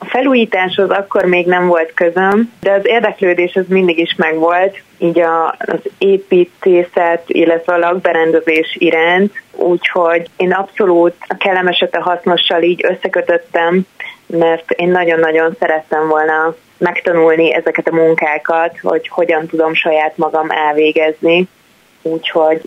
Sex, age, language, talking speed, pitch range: female, 20-39, Hungarian, 120 wpm, 160-180 Hz